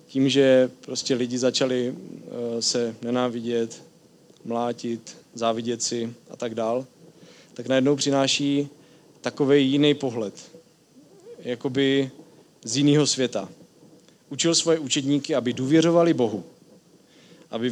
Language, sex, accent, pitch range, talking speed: Czech, male, native, 120-150 Hz, 105 wpm